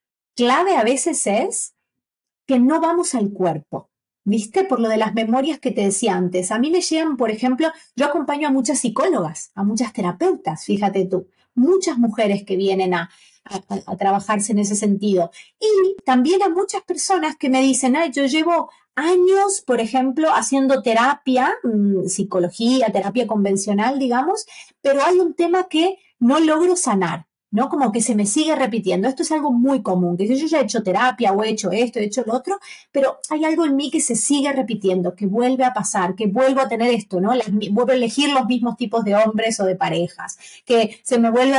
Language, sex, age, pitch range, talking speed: Spanish, female, 30-49, 205-295 Hz, 195 wpm